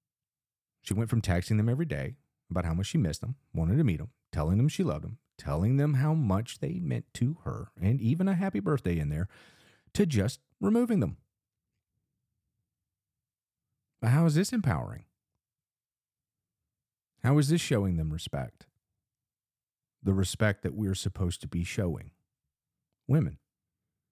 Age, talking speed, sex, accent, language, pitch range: 40-59, 150 wpm, male, American, English, 100-150 Hz